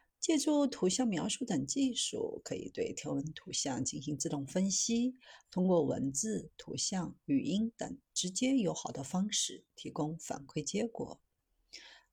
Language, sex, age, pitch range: Chinese, female, 50-69, 150-250 Hz